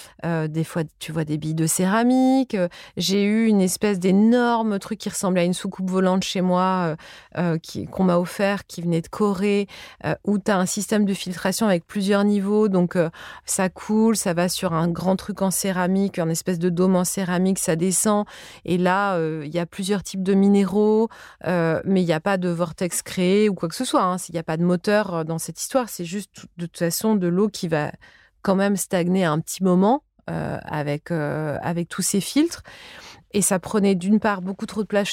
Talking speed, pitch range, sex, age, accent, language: 225 wpm, 175-210 Hz, female, 30-49, French, French